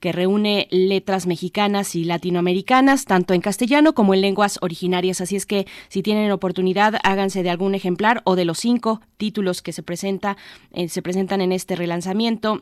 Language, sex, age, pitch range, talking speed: Spanish, female, 20-39, 175-205 Hz, 175 wpm